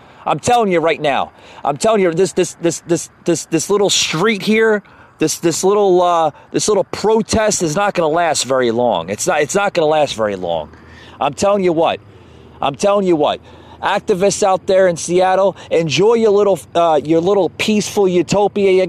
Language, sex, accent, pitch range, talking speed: English, male, American, 130-195 Hz, 195 wpm